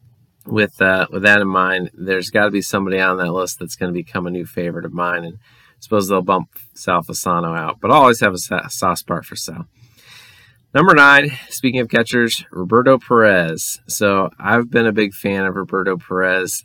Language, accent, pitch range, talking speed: English, American, 95-115 Hz, 205 wpm